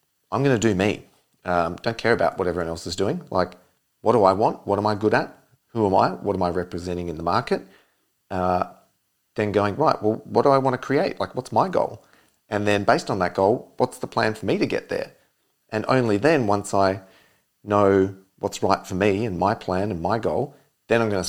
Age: 40-59